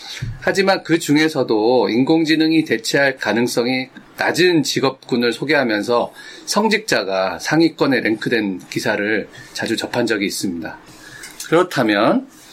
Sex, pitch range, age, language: male, 125-165 Hz, 40-59, Korean